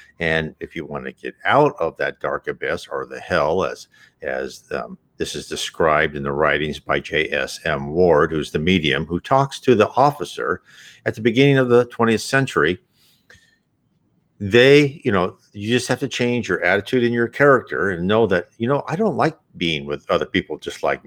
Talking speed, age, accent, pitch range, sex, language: 195 wpm, 50-69, American, 80-110 Hz, male, English